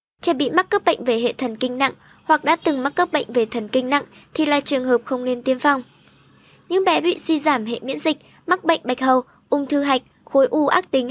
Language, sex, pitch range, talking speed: Vietnamese, male, 250-310 Hz, 255 wpm